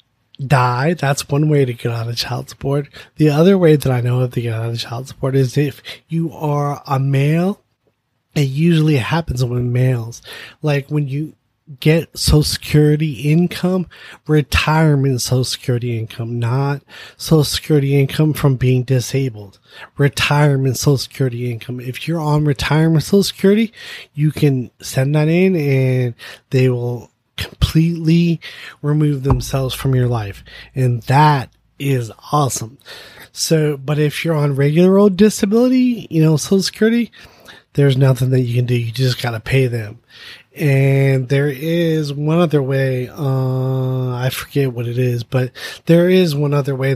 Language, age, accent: English, 20-39, American